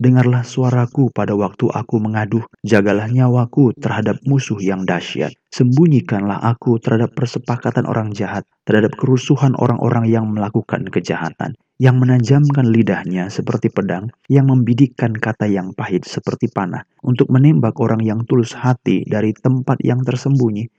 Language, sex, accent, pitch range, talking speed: Indonesian, male, native, 110-130 Hz, 135 wpm